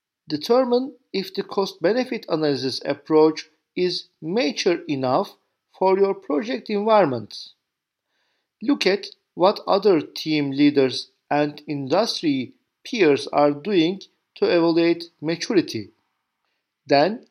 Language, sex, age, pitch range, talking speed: Turkish, male, 50-69, 150-230 Hz, 95 wpm